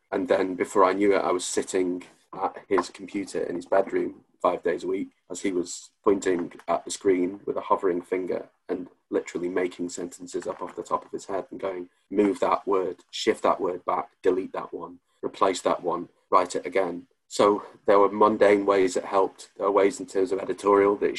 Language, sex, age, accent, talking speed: English, male, 30-49, British, 210 wpm